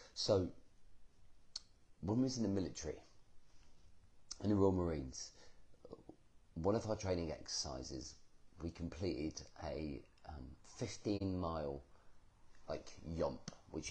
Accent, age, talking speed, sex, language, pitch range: British, 40-59, 110 wpm, male, English, 75-95 Hz